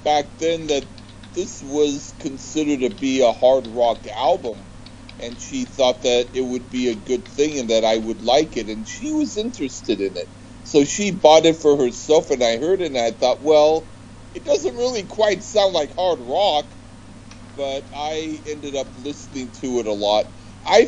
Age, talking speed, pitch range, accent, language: 50-69, 190 wpm, 115-145 Hz, American, English